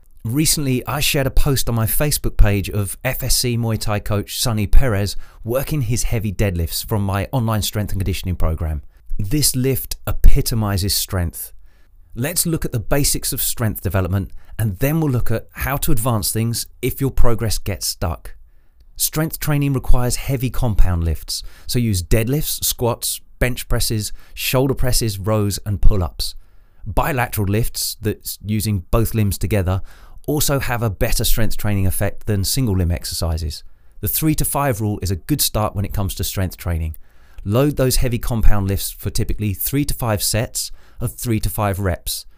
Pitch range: 95-125 Hz